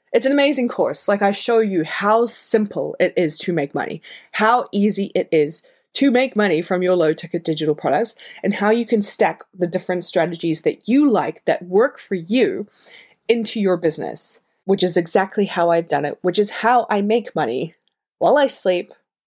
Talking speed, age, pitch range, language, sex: 195 wpm, 20-39, 175-225 Hz, English, female